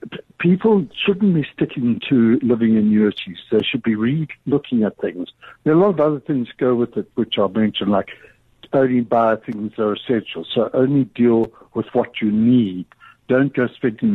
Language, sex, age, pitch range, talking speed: English, male, 60-79, 110-140 Hz, 190 wpm